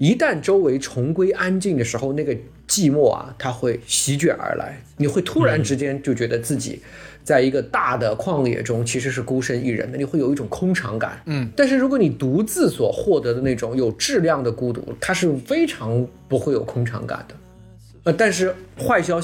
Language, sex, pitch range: Chinese, male, 115-165 Hz